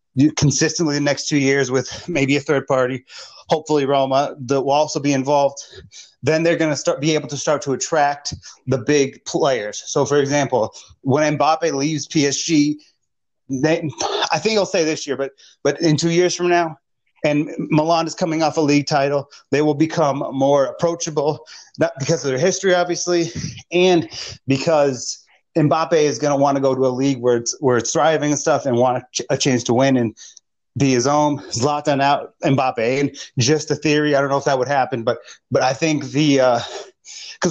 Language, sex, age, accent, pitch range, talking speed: English, male, 30-49, American, 135-160 Hz, 195 wpm